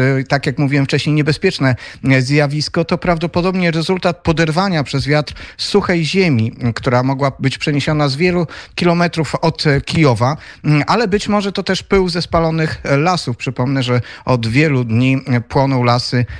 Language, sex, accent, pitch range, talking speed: Polish, male, native, 135-165 Hz, 145 wpm